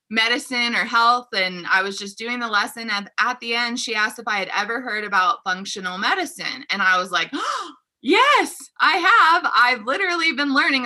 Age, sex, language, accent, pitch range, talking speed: 20-39, female, English, American, 190-240 Hz, 195 wpm